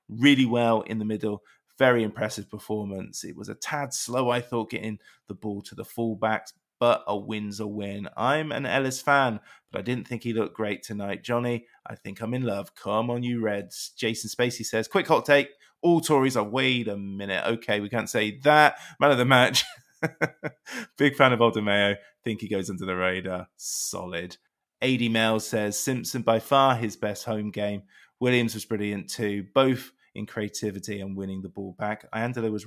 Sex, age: male, 20-39